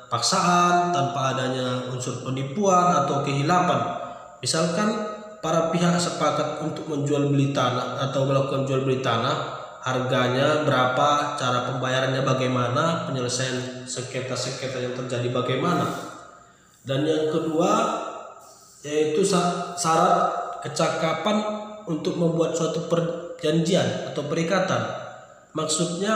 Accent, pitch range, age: native, 135-170 Hz, 20-39